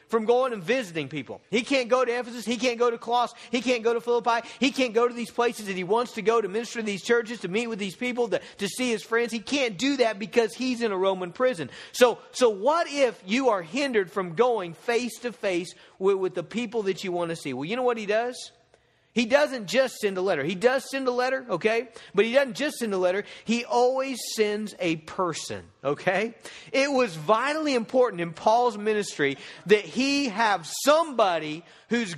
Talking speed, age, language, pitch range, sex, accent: 220 wpm, 40-59, English, 175-235 Hz, male, American